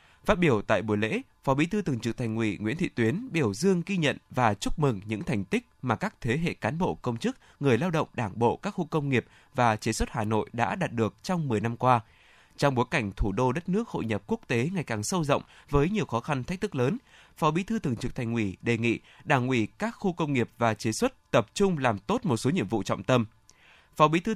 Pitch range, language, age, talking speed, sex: 115-170 Hz, Vietnamese, 20-39, 265 wpm, male